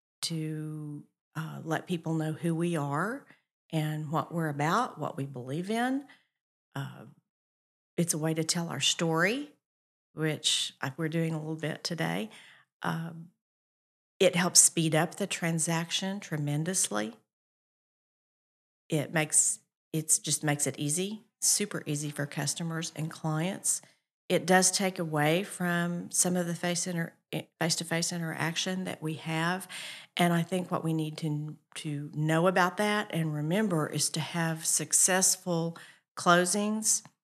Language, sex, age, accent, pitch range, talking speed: English, female, 50-69, American, 155-185 Hz, 135 wpm